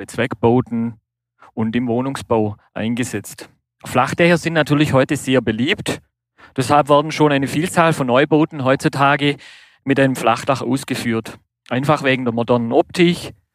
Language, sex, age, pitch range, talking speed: German, male, 40-59, 115-140 Hz, 125 wpm